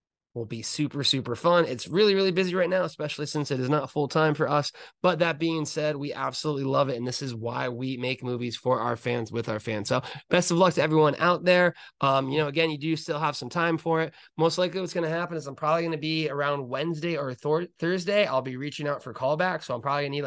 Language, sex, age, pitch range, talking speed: English, male, 20-39, 135-165 Hz, 265 wpm